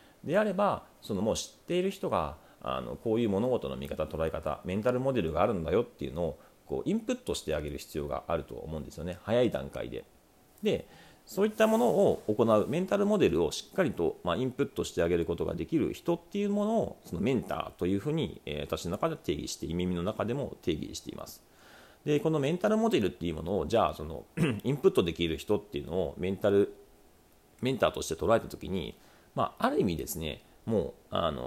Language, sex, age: Japanese, male, 40-59